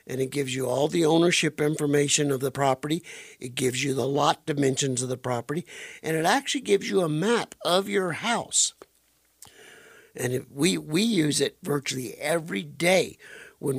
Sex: male